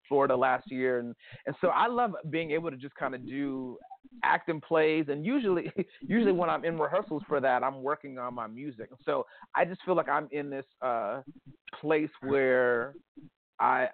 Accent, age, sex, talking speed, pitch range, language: American, 30-49, male, 185 wpm, 125-160 Hz, English